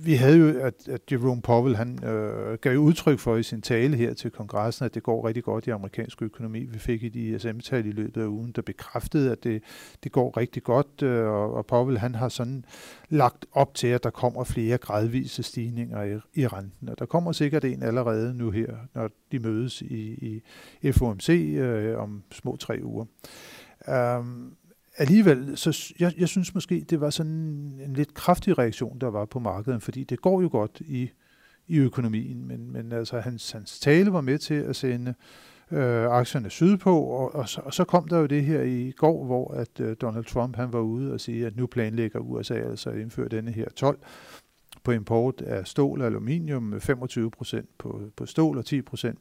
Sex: male